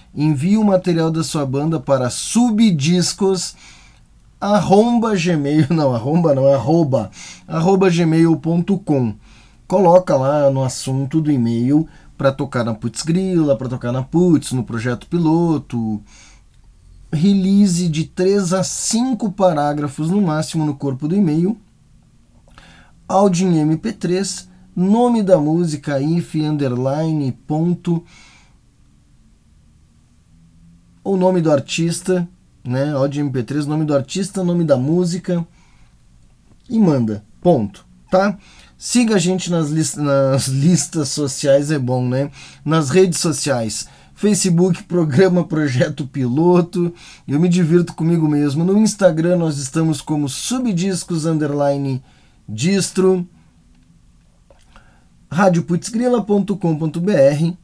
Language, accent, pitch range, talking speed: Portuguese, Brazilian, 135-180 Hz, 105 wpm